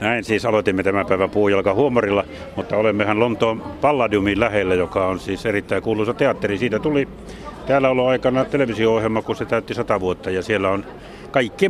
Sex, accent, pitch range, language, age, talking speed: male, native, 100-120 Hz, Finnish, 60-79, 165 wpm